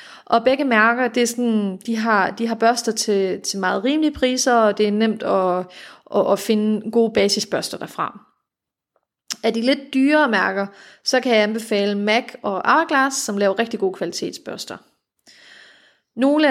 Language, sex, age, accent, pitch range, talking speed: Danish, female, 30-49, native, 205-260 Hz, 165 wpm